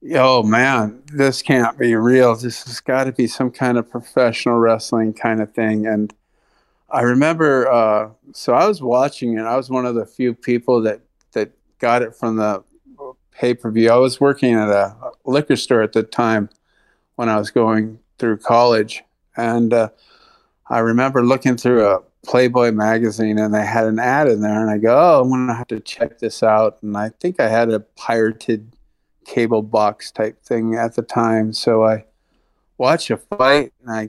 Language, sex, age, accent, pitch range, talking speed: English, male, 50-69, American, 110-125 Hz, 190 wpm